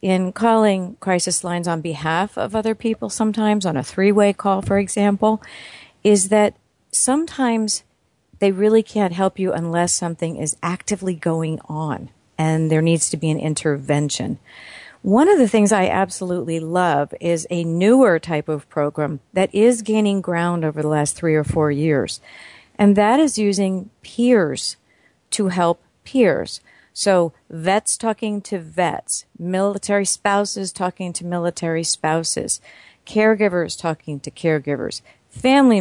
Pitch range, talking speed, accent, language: 160-210 Hz, 140 wpm, American, English